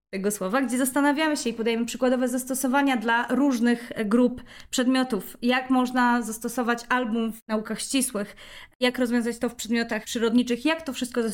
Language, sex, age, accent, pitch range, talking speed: Polish, female, 20-39, native, 215-255 Hz, 160 wpm